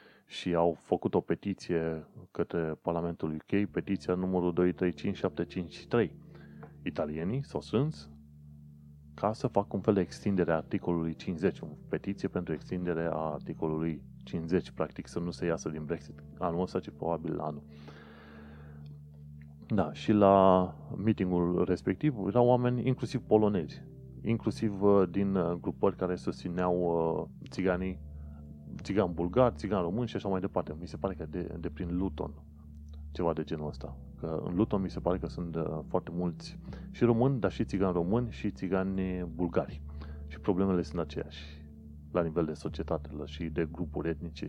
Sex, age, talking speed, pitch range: male, 30-49, 145 wpm, 75-95 Hz